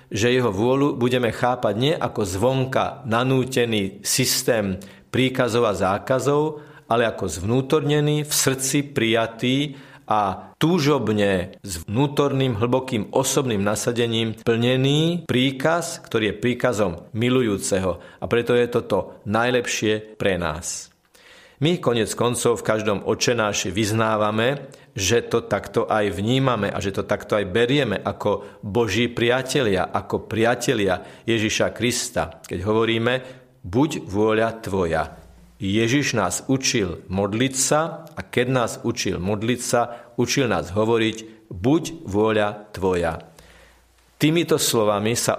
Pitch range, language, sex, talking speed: 105-130 Hz, Slovak, male, 120 wpm